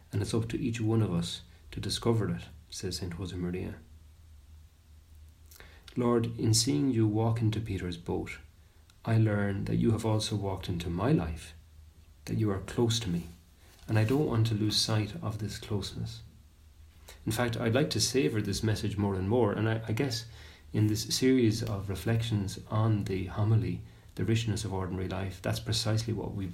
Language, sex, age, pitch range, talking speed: English, male, 40-59, 85-110 Hz, 180 wpm